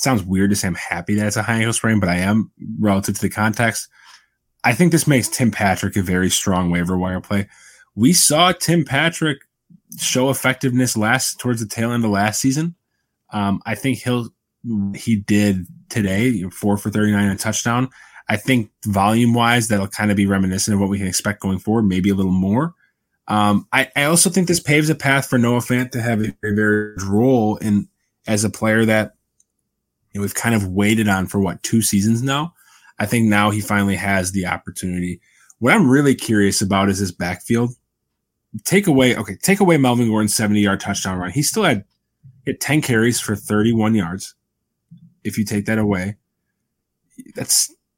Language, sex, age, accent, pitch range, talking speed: English, male, 20-39, American, 100-130 Hz, 195 wpm